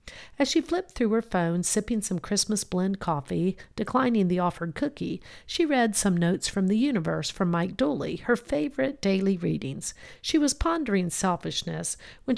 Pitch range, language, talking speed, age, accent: 175-250 Hz, English, 165 wpm, 50-69, American